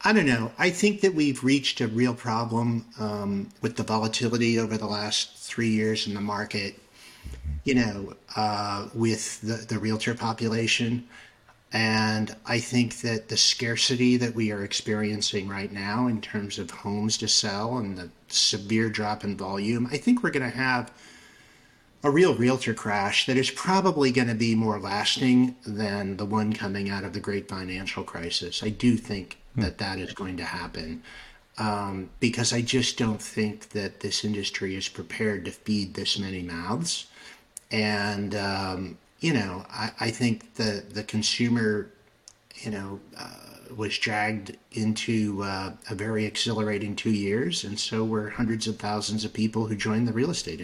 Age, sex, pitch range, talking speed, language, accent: 50-69, male, 105-120 Hz, 170 wpm, English, American